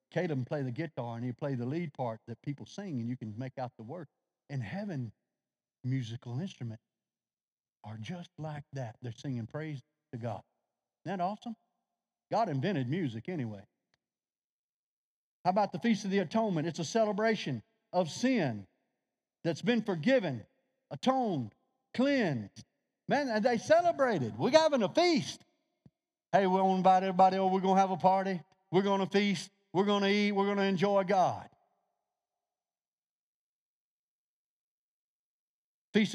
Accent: American